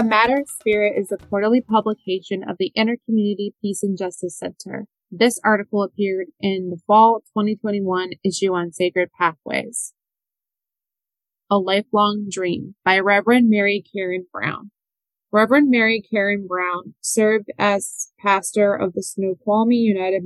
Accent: American